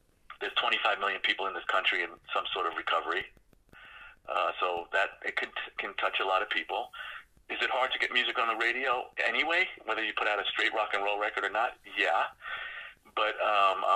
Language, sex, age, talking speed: English, male, 40-59, 210 wpm